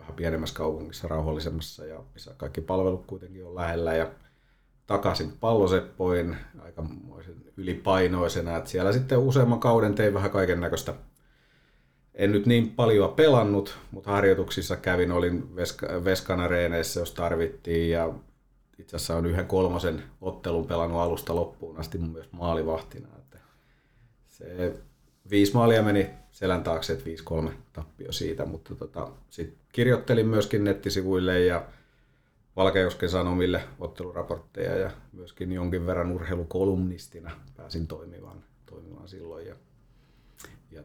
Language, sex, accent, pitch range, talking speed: Finnish, male, native, 85-100 Hz, 125 wpm